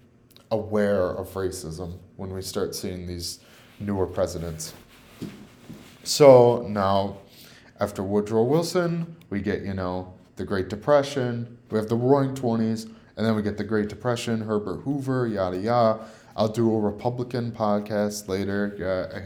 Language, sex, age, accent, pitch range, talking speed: English, male, 20-39, American, 100-130 Hz, 140 wpm